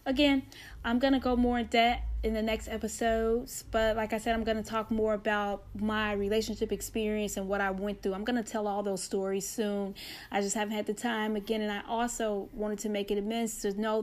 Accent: American